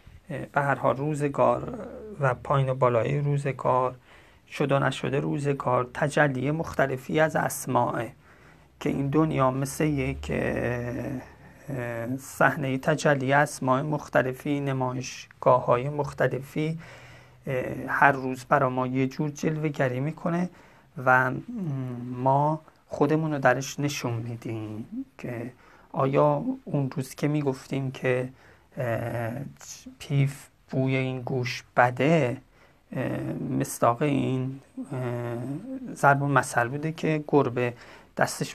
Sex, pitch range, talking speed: male, 130-155 Hz, 95 wpm